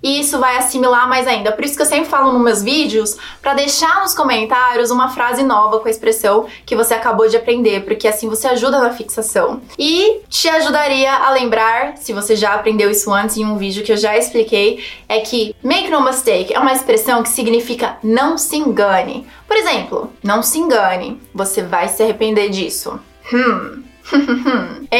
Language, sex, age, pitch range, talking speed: Portuguese, female, 20-39, 220-300 Hz, 190 wpm